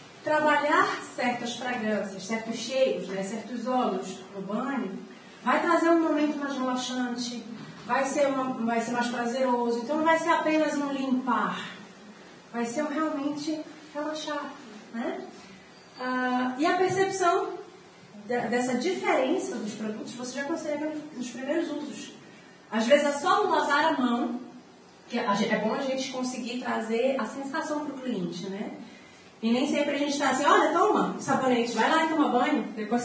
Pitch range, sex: 220-295 Hz, female